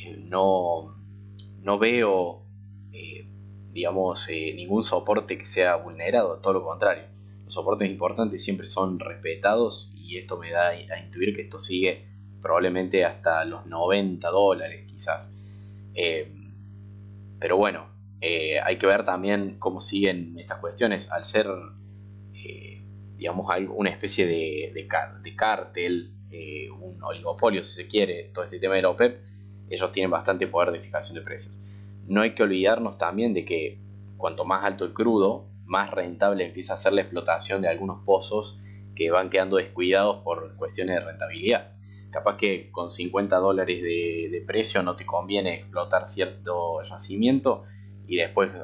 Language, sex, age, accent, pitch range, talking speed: Spanish, male, 20-39, Argentinian, 95-100 Hz, 150 wpm